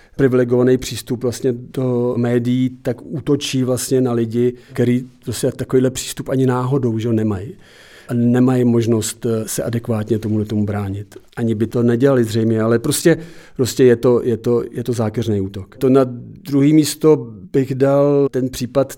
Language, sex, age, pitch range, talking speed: Czech, male, 50-69, 120-135 Hz, 160 wpm